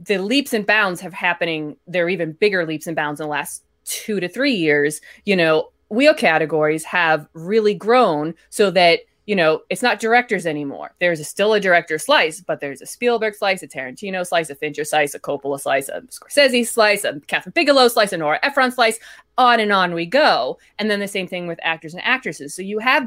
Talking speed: 215 wpm